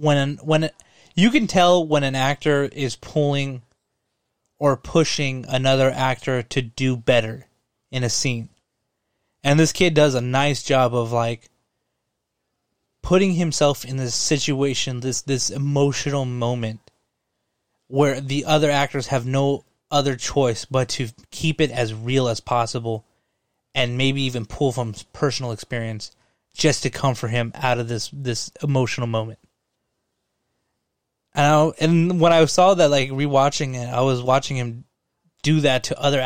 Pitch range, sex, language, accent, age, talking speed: 125-155 Hz, male, English, American, 20-39, 150 wpm